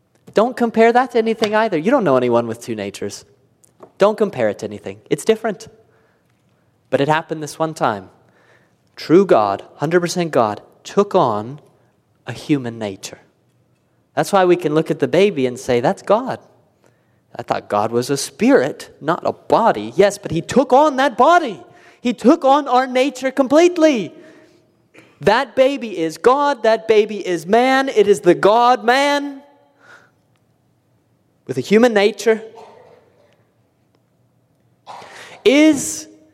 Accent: American